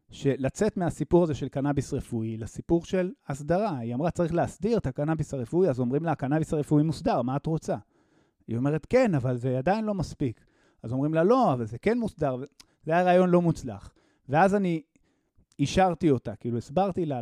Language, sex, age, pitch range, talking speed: Hebrew, male, 30-49, 125-170 Hz, 185 wpm